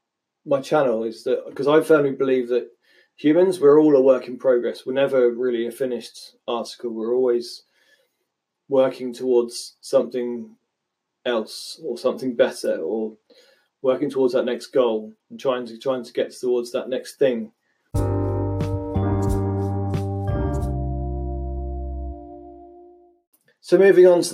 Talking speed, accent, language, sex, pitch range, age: 125 wpm, British, English, male, 120-145 Hz, 20-39